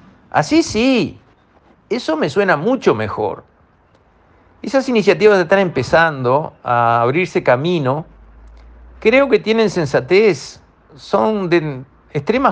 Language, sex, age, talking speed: Spanish, male, 50-69, 100 wpm